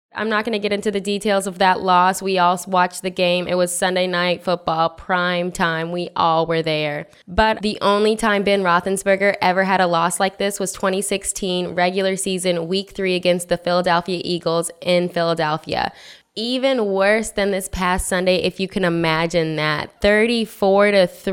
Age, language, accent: 10-29, English, American